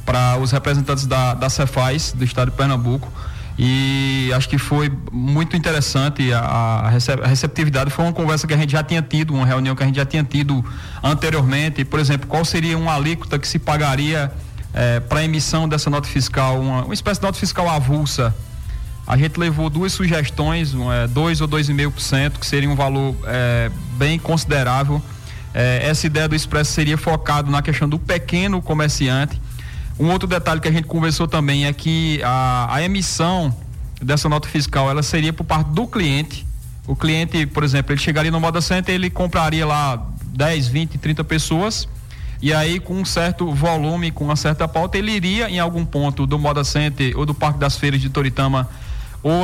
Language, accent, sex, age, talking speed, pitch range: Portuguese, Brazilian, male, 20-39, 190 wpm, 135-160 Hz